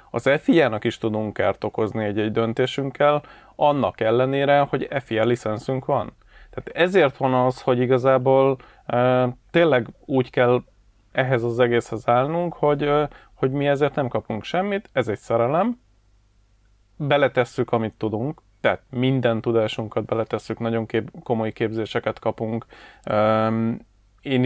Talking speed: 120 wpm